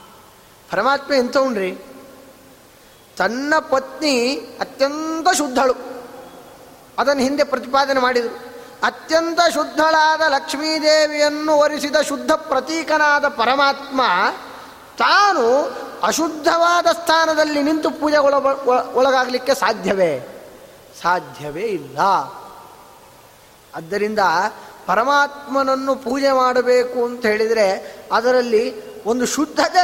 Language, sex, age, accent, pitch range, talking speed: Kannada, male, 20-39, native, 255-315 Hz, 70 wpm